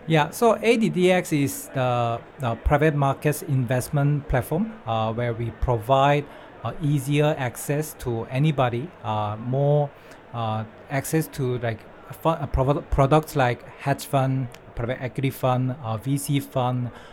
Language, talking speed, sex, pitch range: English, 125 wpm, male, 120-145 Hz